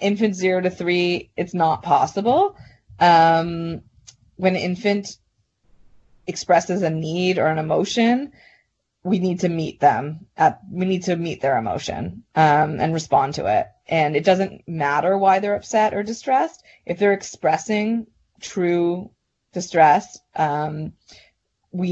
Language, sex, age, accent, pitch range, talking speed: English, female, 20-39, American, 160-195 Hz, 135 wpm